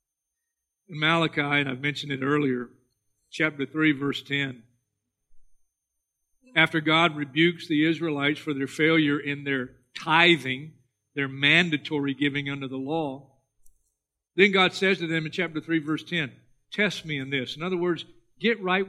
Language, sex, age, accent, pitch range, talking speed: English, male, 50-69, American, 140-215 Hz, 145 wpm